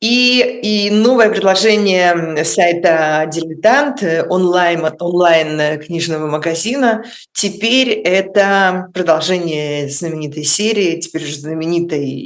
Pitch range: 150-190 Hz